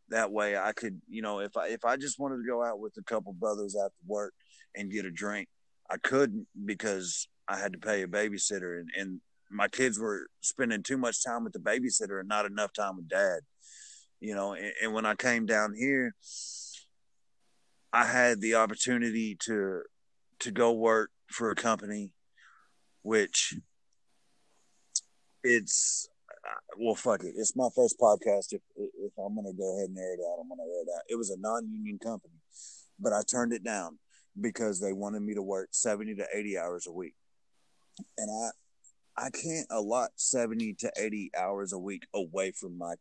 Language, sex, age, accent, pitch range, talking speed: English, male, 30-49, American, 100-130 Hz, 190 wpm